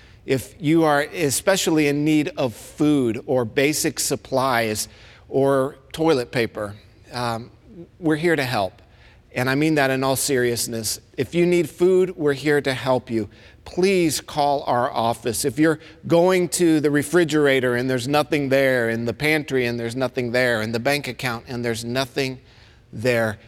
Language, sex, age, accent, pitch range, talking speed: English, male, 50-69, American, 120-150 Hz, 165 wpm